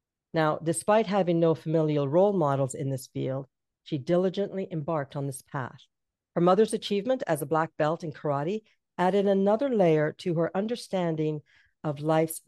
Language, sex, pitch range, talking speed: English, female, 150-190 Hz, 160 wpm